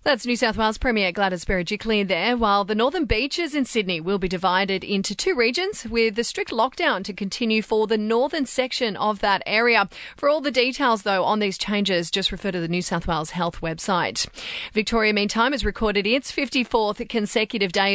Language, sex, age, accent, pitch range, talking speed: English, female, 30-49, Australian, 190-240 Hz, 195 wpm